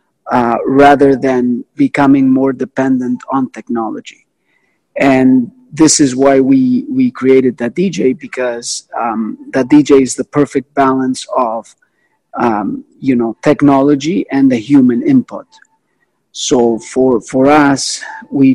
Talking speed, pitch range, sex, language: 125 wpm, 125-150 Hz, male, English